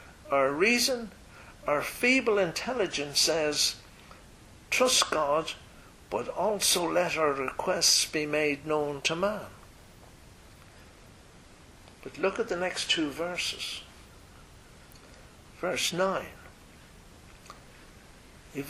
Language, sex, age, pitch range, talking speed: English, male, 60-79, 145-210 Hz, 90 wpm